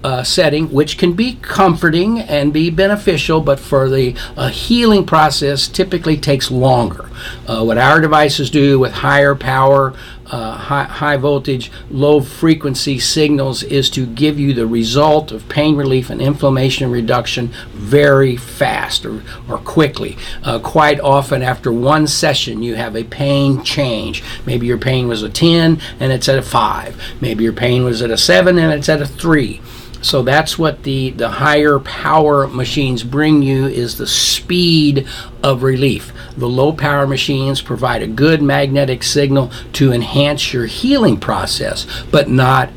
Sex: male